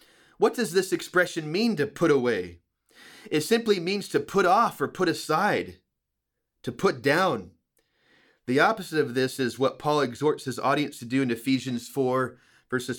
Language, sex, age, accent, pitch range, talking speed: English, male, 30-49, American, 125-170 Hz, 165 wpm